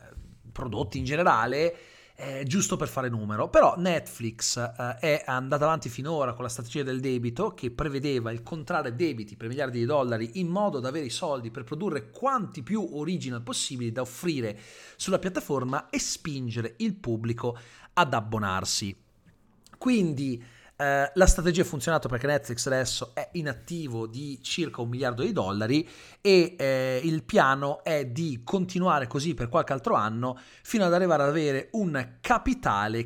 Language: Italian